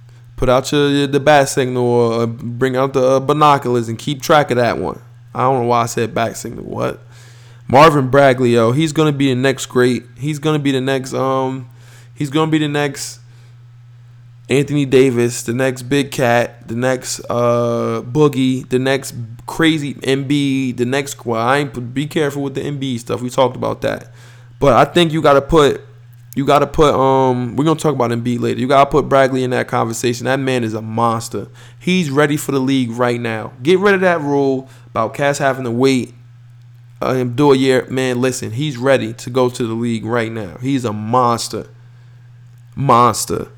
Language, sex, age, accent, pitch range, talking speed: English, male, 20-39, American, 120-140 Hz, 190 wpm